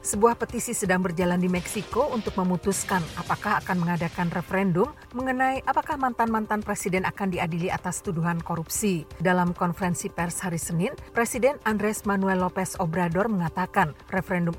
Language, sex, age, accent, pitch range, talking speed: Indonesian, female, 40-59, native, 175-205 Hz, 135 wpm